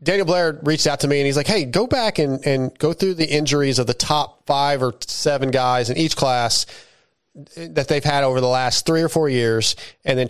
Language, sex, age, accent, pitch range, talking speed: English, male, 30-49, American, 135-170 Hz, 235 wpm